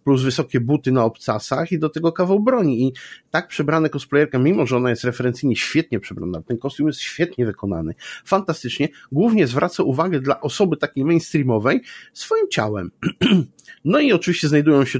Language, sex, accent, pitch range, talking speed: Polish, male, native, 115-150 Hz, 165 wpm